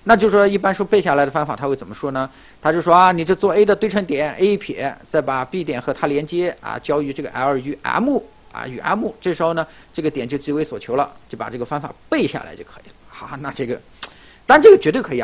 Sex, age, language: male, 50-69, Chinese